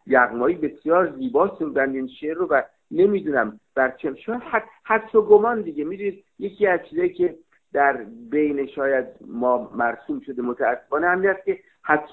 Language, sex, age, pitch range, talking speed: Persian, male, 50-69, 135-215 Hz, 155 wpm